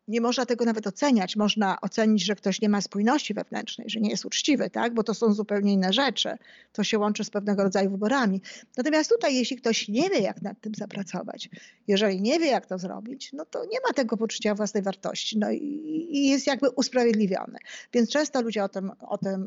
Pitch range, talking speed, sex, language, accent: 200-235 Hz, 210 wpm, female, Polish, native